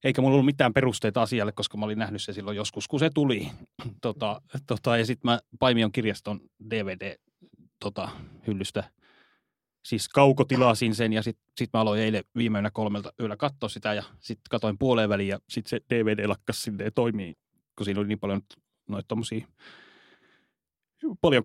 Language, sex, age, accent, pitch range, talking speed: Finnish, male, 30-49, native, 105-125 Hz, 155 wpm